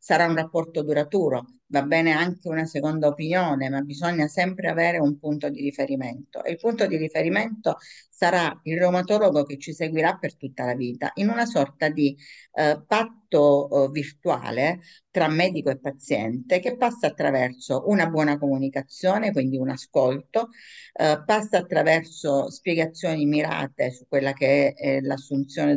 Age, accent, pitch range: 50-69, native, 135-175 Hz